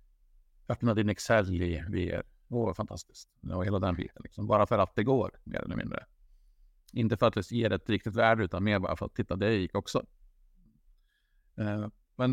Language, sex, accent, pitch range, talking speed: Swedish, male, Norwegian, 90-105 Hz, 180 wpm